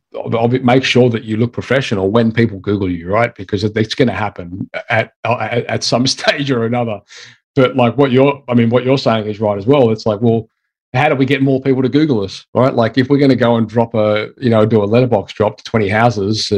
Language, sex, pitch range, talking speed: English, male, 110-135 Hz, 245 wpm